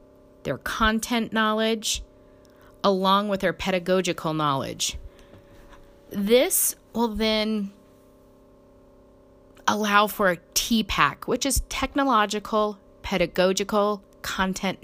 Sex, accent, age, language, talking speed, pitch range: female, American, 30-49, English, 80 wpm, 150-210 Hz